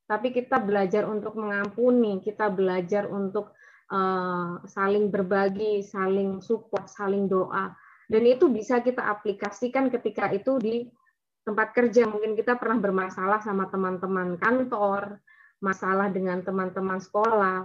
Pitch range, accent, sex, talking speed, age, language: 195-245 Hz, native, female, 120 wpm, 20-39, Indonesian